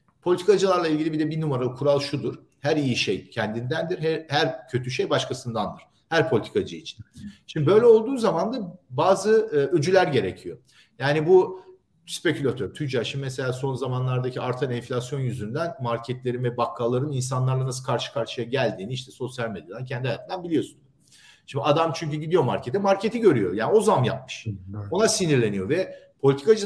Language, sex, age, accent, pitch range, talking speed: Turkish, male, 50-69, native, 130-190 Hz, 155 wpm